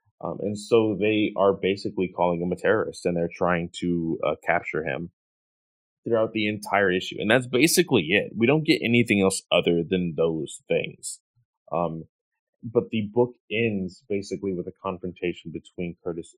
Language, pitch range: English, 85-110 Hz